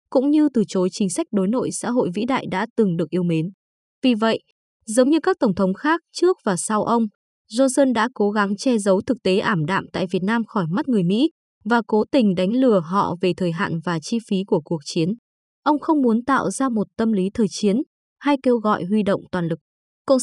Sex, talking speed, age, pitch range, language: female, 235 wpm, 20-39, 195-255 Hz, Vietnamese